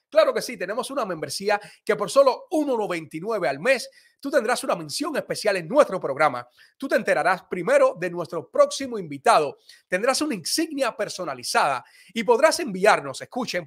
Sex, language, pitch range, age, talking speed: male, Spanish, 160-245 Hz, 30-49, 160 wpm